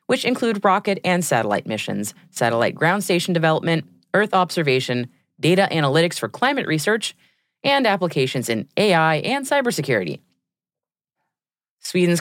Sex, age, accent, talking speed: female, 30-49, American, 120 wpm